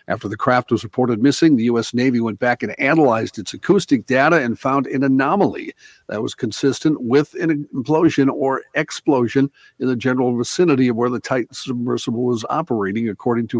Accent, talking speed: American, 180 wpm